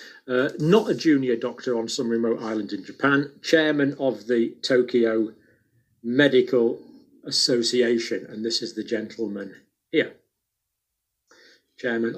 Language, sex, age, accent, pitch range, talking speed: English, male, 40-59, British, 115-145 Hz, 120 wpm